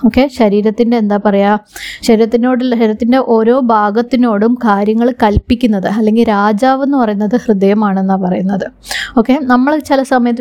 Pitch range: 215-260 Hz